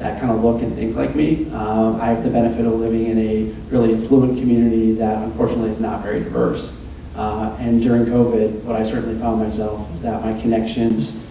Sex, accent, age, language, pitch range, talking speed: male, American, 40-59, English, 110-120 Hz, 205 wpm